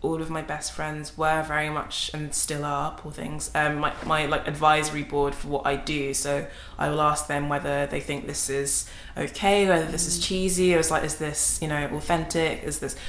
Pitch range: 145-160 Hz